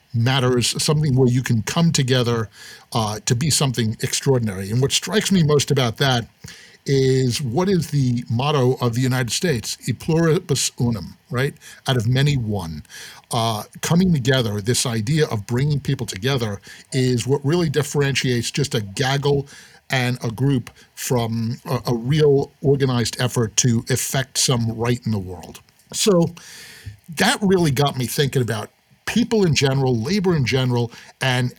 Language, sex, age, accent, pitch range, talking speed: English, male, 50-69, American, 120-155 Hz, 155 wpm